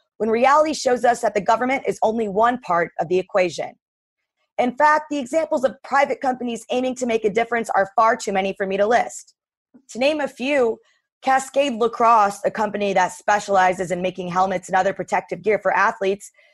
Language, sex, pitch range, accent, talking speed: English, female, 195-265 Hz, American, 190 wpm